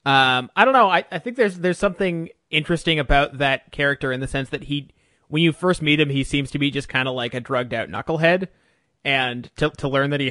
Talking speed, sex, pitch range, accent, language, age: 245 wpm, male, 125-150 Hz, American, English, 20-39